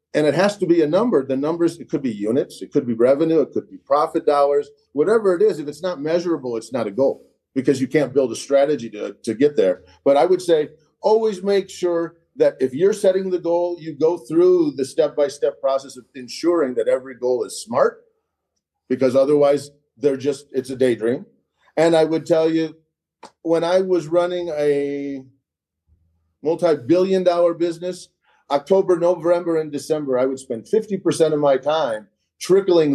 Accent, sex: American, male